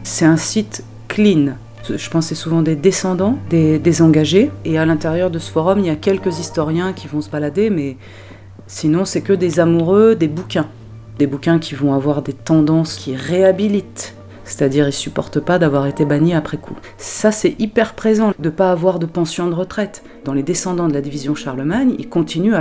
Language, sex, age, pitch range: French, female, 30-49, 140-180 Hz